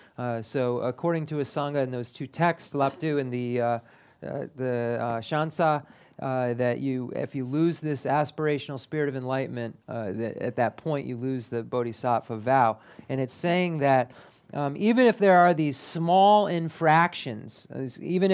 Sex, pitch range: male, 130-170 Hz